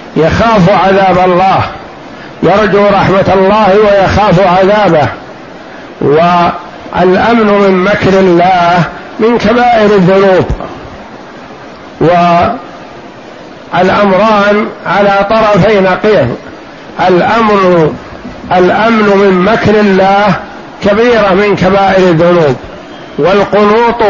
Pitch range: 190-220 Hz